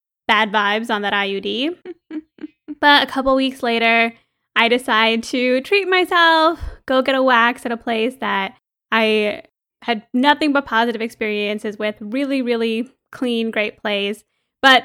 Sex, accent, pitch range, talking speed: female, American, 225-280 Hz, 145 wpm